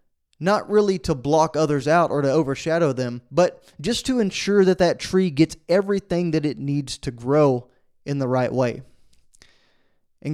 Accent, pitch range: American, 140-175 Hz